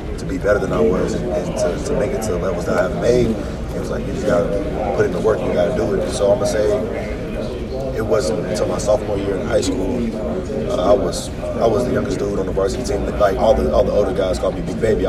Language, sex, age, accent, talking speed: English, male, 30-49, American, 275 wpm